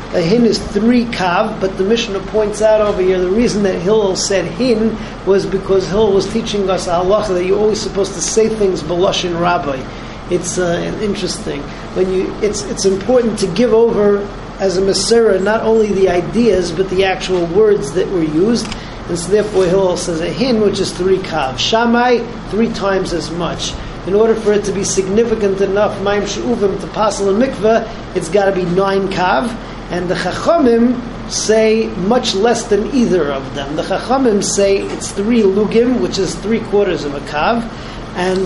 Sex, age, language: male, 40-59, English